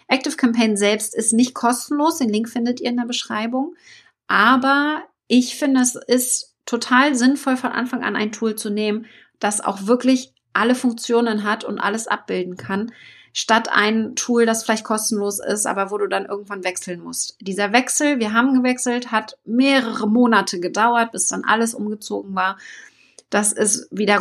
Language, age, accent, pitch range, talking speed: German, 30-49, German, 205-250 Hz, 170 wpm